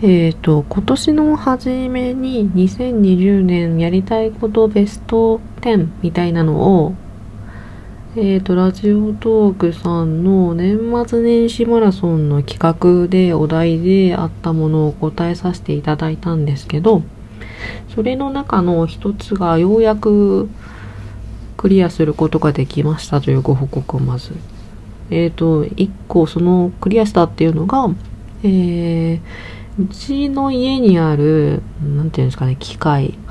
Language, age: Japanese, 40-59